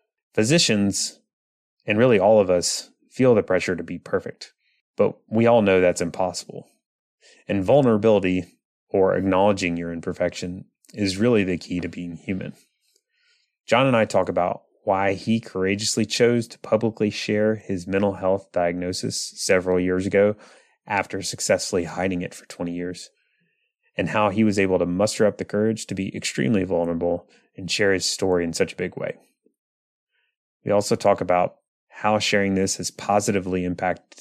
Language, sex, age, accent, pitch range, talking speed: English, male, 30-49, American, 90-105 Hz, 160 wpm